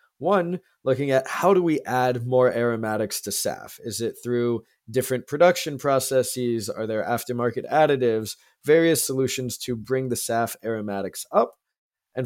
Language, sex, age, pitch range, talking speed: English, male, 20-39, 115-140 Hz, 145 wpm